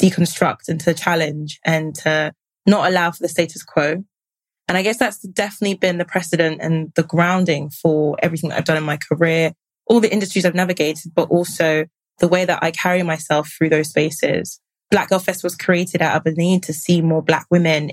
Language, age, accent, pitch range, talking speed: English, 20-39, British, 160-180 Hz, 205 wpm